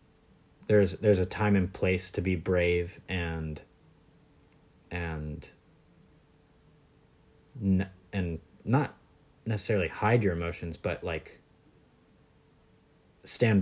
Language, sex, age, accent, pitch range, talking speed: English, male, 30-49, American, 80-95 Hz, 90 wpm